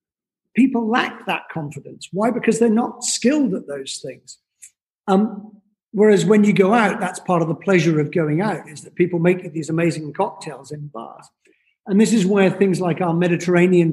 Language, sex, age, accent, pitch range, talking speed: English, male, 50-69, British, 165-205 Hz, 185 wpm